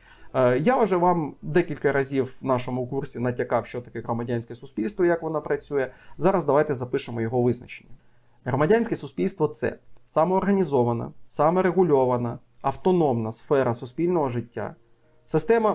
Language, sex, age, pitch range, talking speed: Ukrainian, male, 30-49, 125-175 Hz, 120 wpm